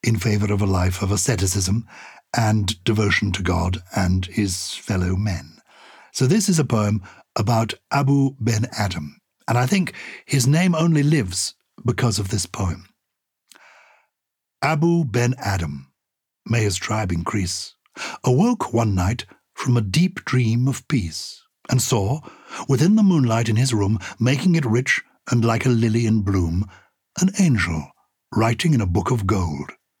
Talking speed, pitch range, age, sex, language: 150 wpm, 100-135 Hz, 60-79, male, English